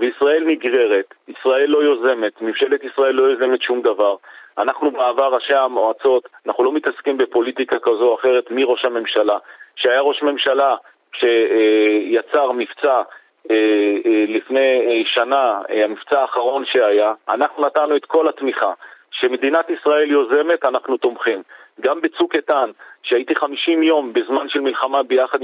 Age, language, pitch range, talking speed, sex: 40-59, Hebrew, 130-175 Hz, 125 wpm, male